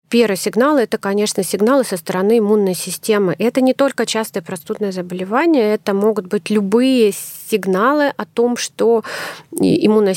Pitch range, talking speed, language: 190-230 Hz, 140 wpm, Russian